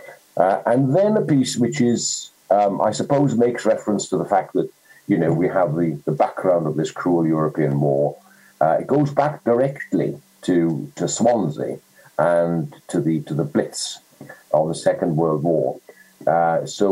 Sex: male